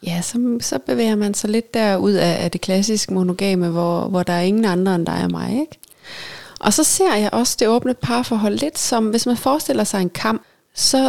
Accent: native